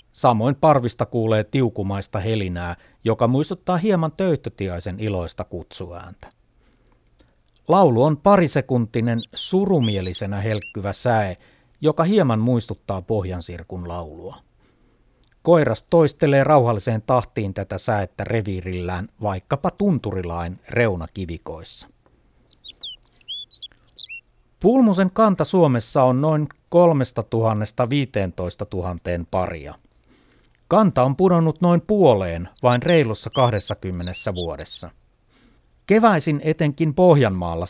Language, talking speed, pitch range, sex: Finnish, 85 wpm, 95-145 Hz, male